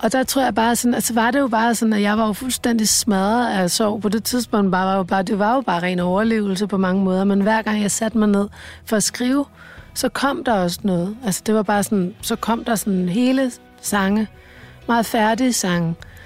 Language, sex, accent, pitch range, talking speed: Danish, female, native, 195-235 Hz, 240 wpm